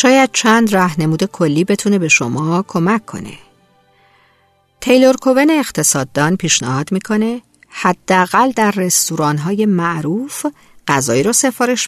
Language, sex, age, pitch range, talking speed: Persian, female, 50-69, 150-235 Hz, 105 wpm